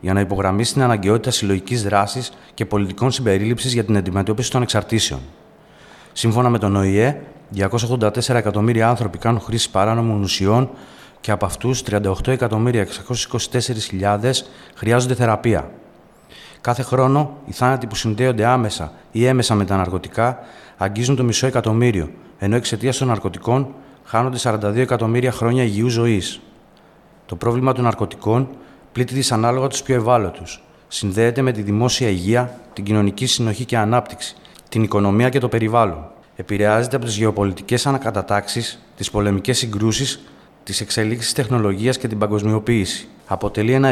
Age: 30-49